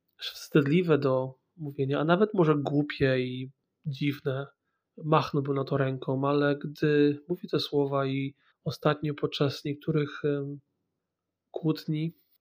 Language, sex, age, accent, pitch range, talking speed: Polish, male, 30-49, native, 140-155 Hz, 110 wpm